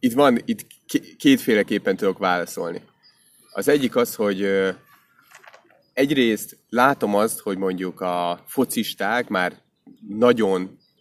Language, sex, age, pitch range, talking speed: Hungarian, male, 30-49, 90-135 Hz, 105 wpm